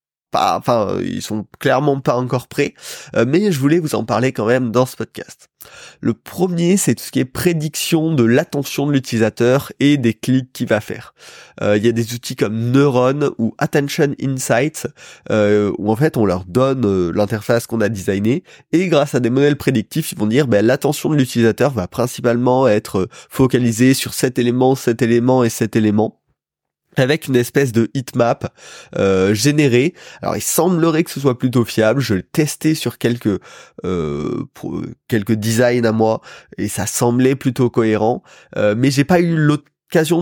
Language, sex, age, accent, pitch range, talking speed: French, male, 20-39, French, 110-140 Hz, 180 wpm